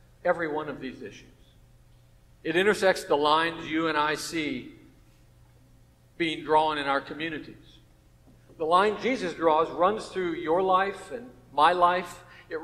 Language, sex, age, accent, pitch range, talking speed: English, male, 60-79, American, 125-180 Hz, 140 wpm